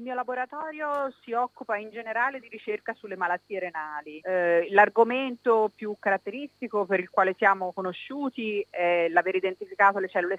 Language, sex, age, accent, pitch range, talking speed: Italian, female, 30-49, native, 175-220 Hz, 150 wpm